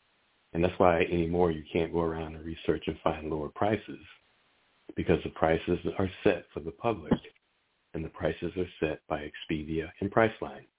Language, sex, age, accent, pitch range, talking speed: English, male, 60-79, American, 85-110 Hz, 170 wpm